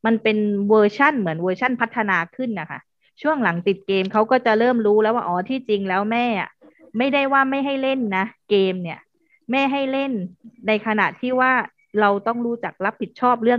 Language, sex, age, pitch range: Thai, female, 20-39, 185-230 Hz